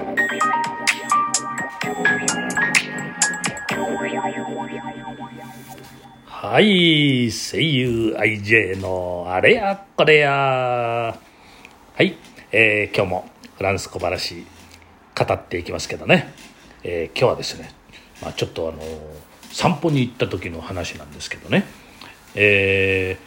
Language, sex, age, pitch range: Japanese, male, 40-59, 90-145 Hz